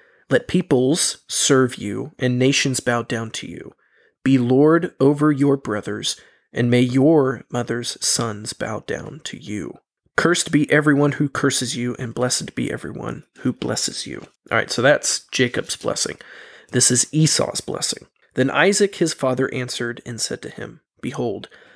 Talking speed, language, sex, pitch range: 155 wpm, English, male, 125-145 Hz